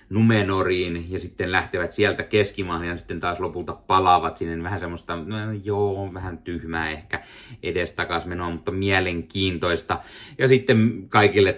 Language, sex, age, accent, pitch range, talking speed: Finnish, male, 30-49, native, 80-95 Hz, 135 wpm